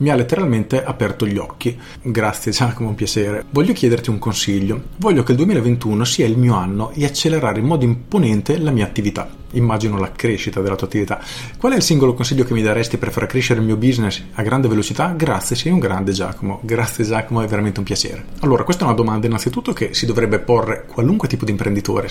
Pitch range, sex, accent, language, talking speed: 105-130 Hz, male, native, Italian, 210 wpm